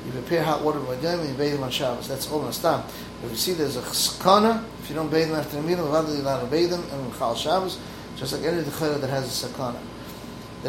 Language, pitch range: English, 135-155 Hz